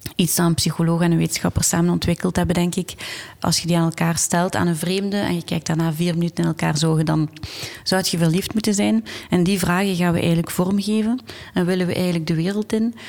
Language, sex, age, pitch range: Dutch, female, 30-49, 165-195 Hz